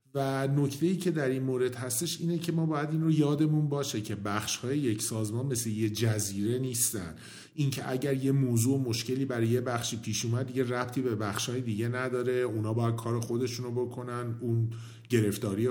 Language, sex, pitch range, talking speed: Persian, male, 110-140 Hz, 190 wpm